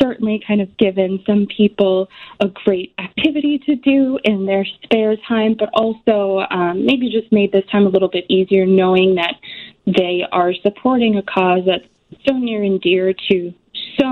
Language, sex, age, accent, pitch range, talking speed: English, female, 20-39, American, 185-215 Hz, 175 wpm